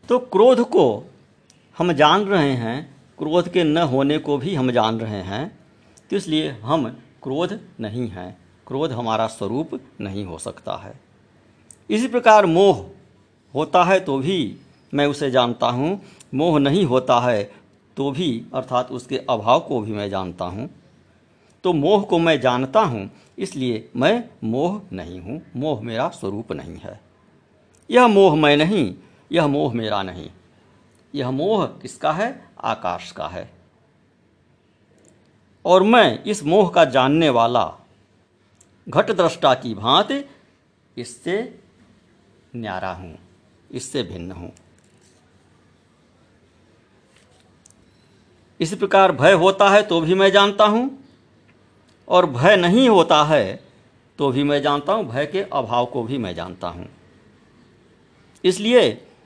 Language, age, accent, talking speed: Hindi, 50-69, native, 135 wpm